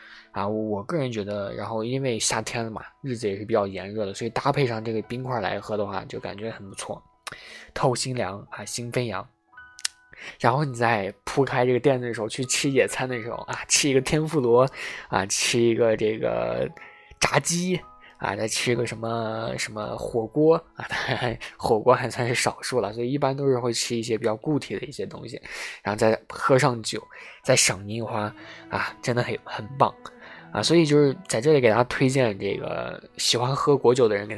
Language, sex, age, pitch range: Chinese, male, 20-39, 110-145 Hz